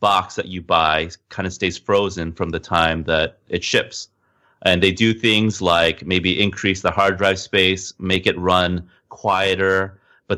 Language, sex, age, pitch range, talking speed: English, male, 30-49, 85-100 Hz, 175 wpm